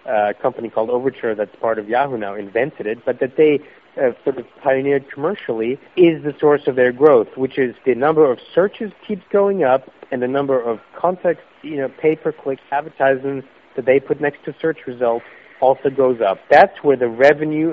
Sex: male